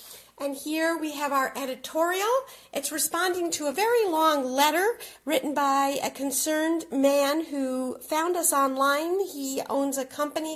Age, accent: 50-69, American